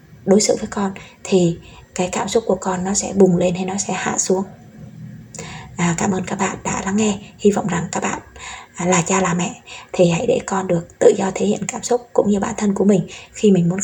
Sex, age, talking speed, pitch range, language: female, 20-39, 240 wpm, 185-215 Hz, Vietnamese